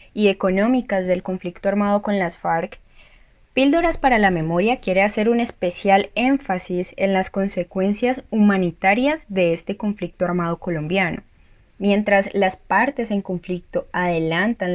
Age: 10-29